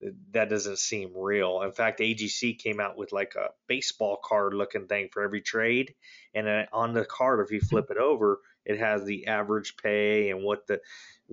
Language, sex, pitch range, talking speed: English, male, 100-115 Hz, 190 wpm